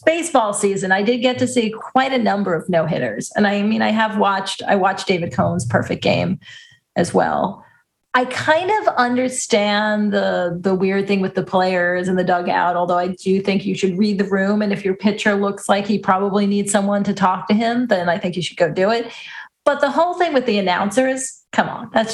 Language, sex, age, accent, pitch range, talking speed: English, female, 40-59, American, 190-240 Hz, 220 wpm